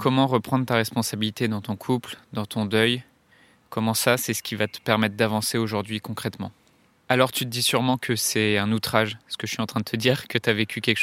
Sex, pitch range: male, 110-120 Hz